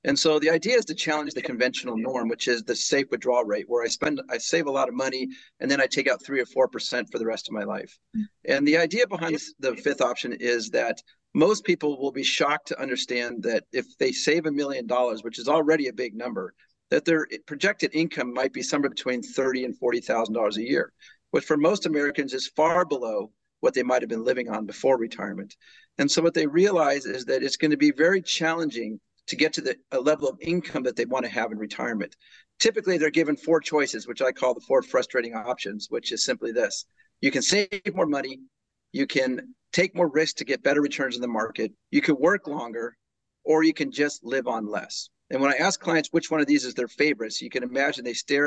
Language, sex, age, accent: English, male, 40-59, American